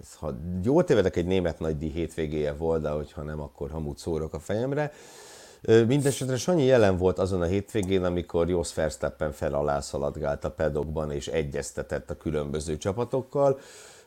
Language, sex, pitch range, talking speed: Hungarian, male, 80-110 Hz, 150 wpm